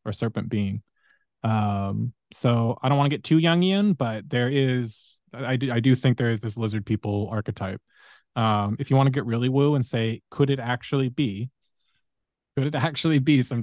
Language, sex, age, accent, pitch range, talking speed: English, male, 20-39, American, 115-140 Hz, 205 wpm